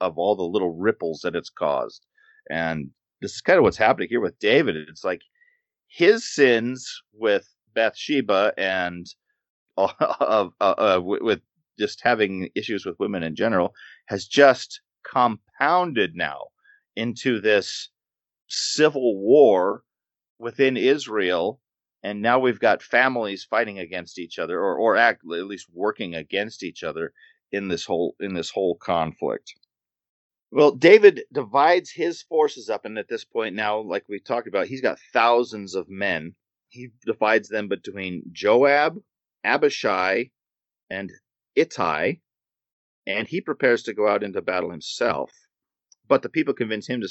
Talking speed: 145 wpm